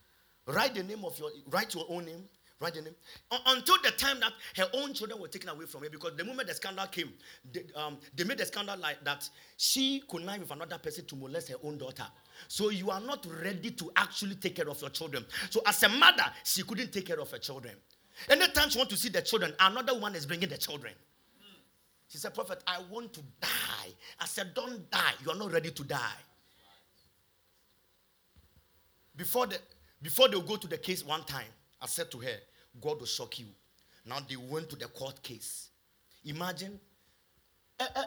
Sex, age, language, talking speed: male, 40-59, English, 205 wpm